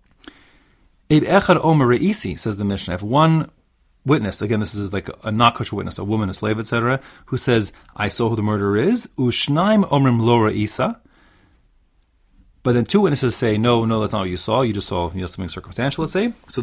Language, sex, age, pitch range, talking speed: English, male, 30-49, 95-130 Hz, 205 wpm